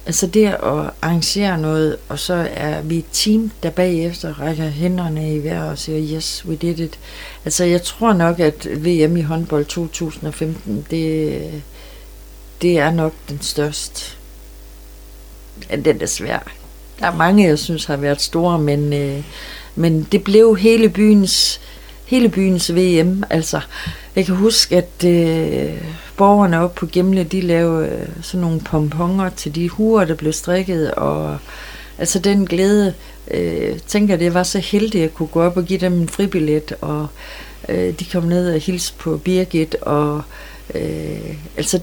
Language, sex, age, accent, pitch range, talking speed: Danish, female, 60-79, native, 155-185 Hz, 160 wpm